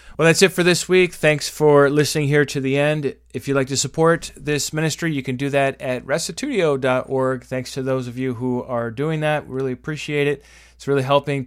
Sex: male